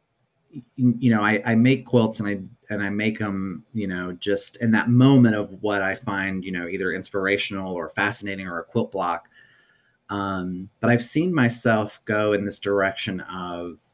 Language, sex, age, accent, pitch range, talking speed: English, male, 30-49, American, 90-115 Hz, 180 wpm